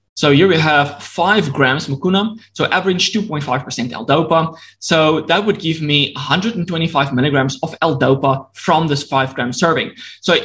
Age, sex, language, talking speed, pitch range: 20-39, male, English, 150 wpm, 135-180 Hz